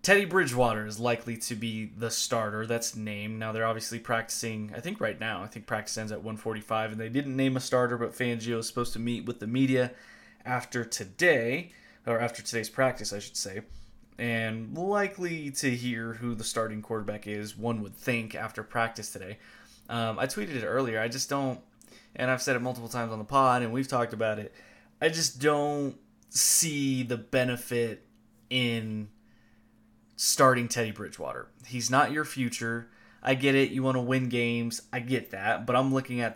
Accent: American